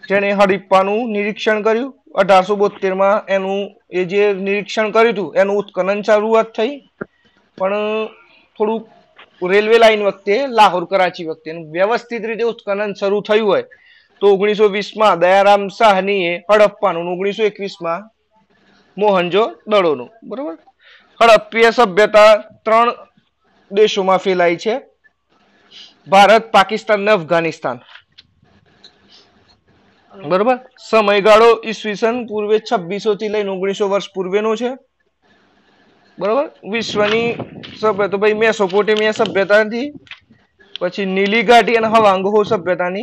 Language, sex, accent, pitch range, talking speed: Gujarati, male, native, 200-225 Hz, 40 wpm